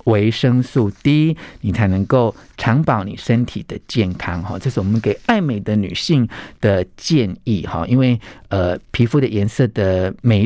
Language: Chinese